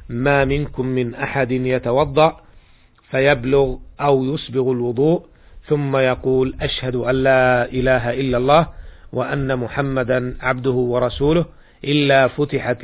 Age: 40-59